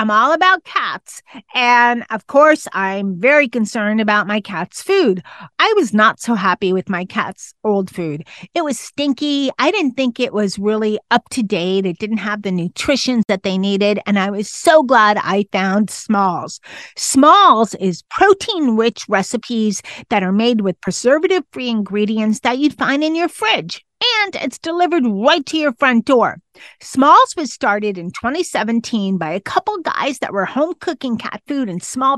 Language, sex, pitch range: English, female, 205-285 Hz